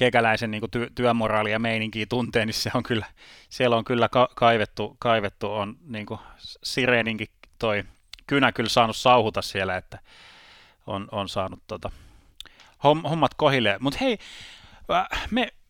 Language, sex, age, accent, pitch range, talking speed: Finnish, male, 30-49, native, 110-135 Hz, 140 wpm